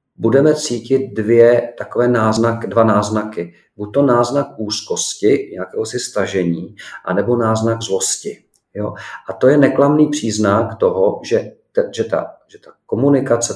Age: 40-59